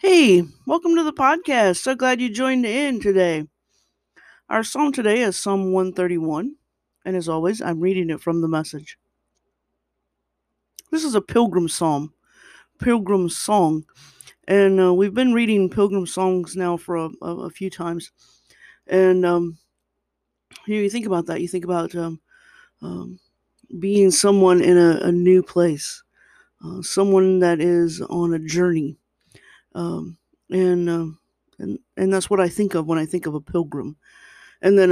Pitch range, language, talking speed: 165-210 Hz, English, 155 wpm